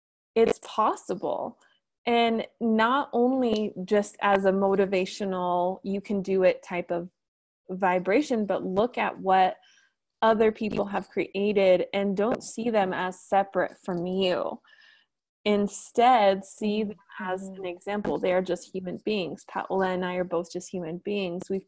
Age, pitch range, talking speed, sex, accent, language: 20-39, 185-225 Hz, 145 wpm, female, American, English